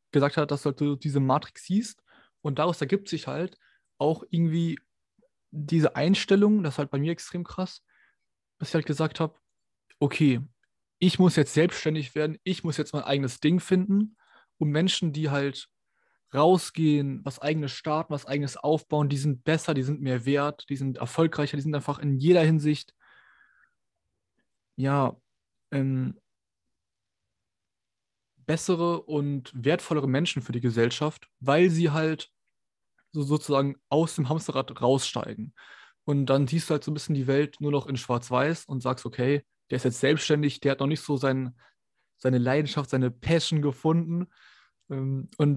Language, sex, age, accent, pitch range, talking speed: German, male, 20-39, German, 135-160 Hz, 155 wpm